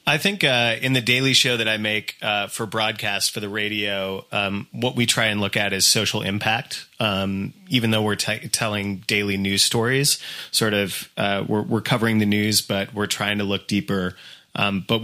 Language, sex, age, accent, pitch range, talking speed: German, male, 30-49, American, 100-115 Hz, 200 wpm